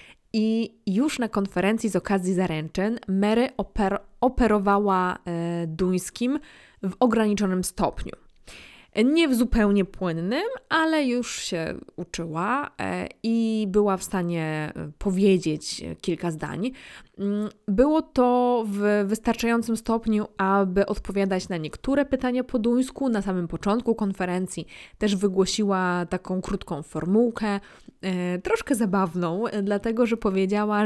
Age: 20-39